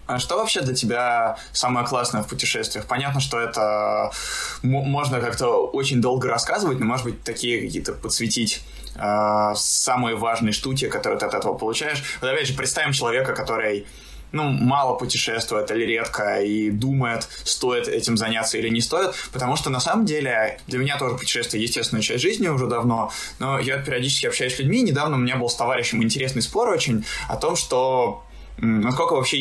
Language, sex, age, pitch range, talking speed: Russian, male, 20-39, 115-135 Hz, 175 wpm